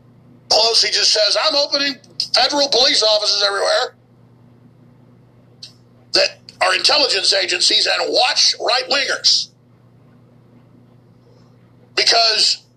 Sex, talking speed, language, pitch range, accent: male, 80 wpm, English, 190-250 Hz, American